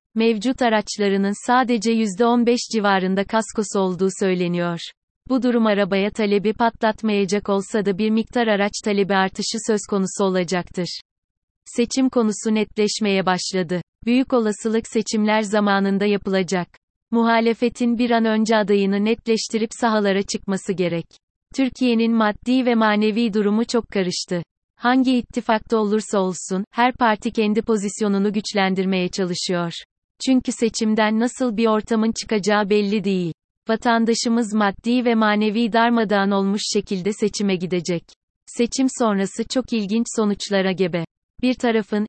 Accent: native